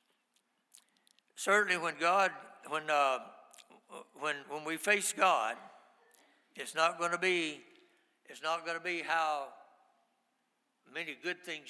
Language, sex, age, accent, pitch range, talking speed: English, male, 60-79, American, 160-185 Hz, 125 wpm